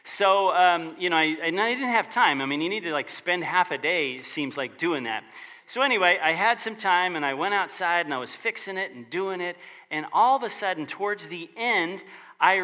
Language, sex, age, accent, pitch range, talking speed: English, male, 40-59, American, 155-220 Hz, 245 wpm